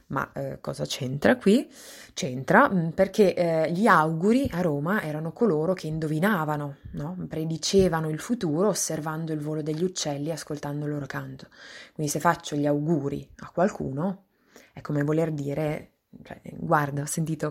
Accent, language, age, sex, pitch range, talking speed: native, Italian, 20-39, female, 145-180 Hz, 145 wpm